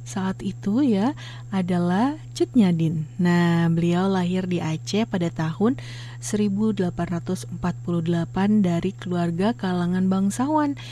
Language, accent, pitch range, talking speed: Indonesian, native, 165-195 Hz, 95 wpm